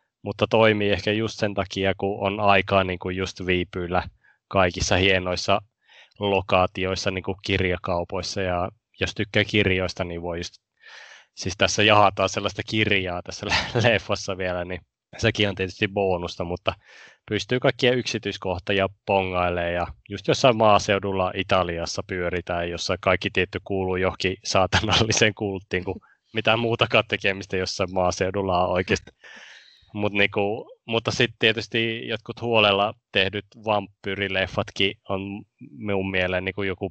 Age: 20-39